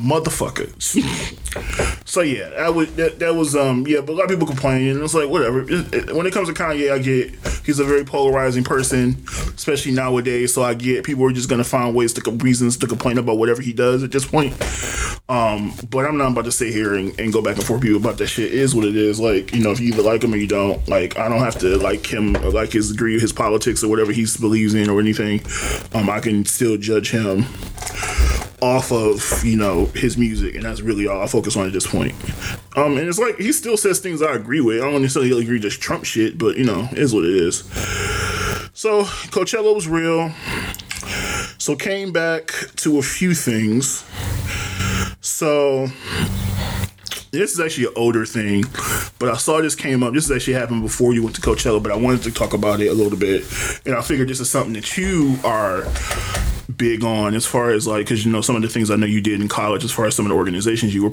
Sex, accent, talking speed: male, American, 230 wpm